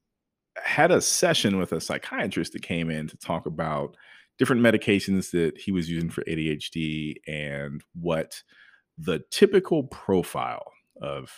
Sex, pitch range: male, 90-140 Hz